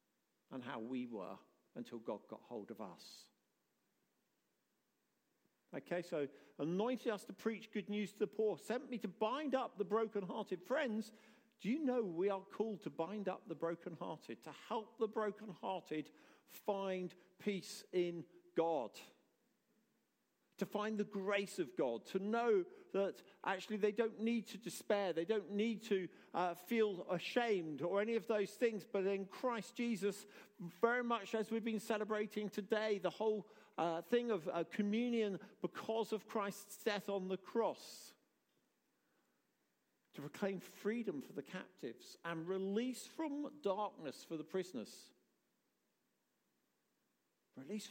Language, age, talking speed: English, 50-69, 145 wpm